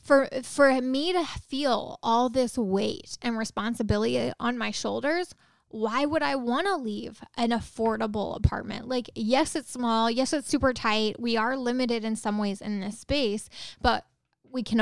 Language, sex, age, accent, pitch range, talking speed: English, female, 10-29, American, 220-265 Hz, 170 wpm